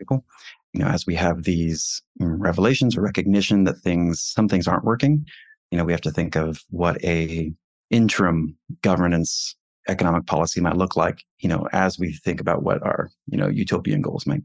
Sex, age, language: male, 30-49, English